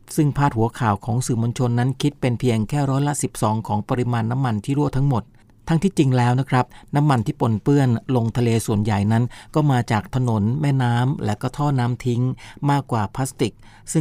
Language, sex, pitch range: Thai, male, 110-130 Hz